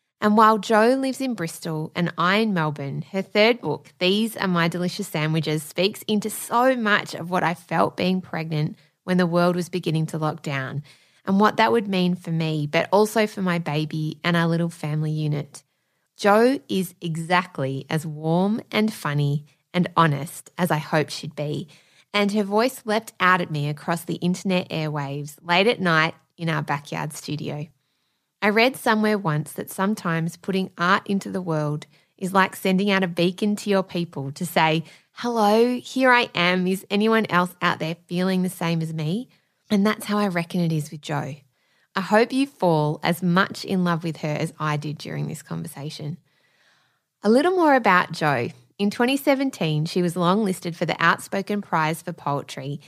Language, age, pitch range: English, 20-39, 155-205 Hz